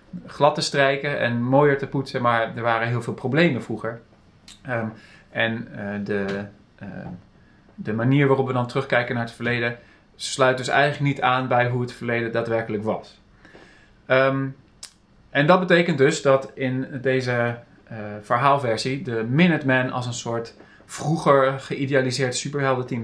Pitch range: 110-135 Hz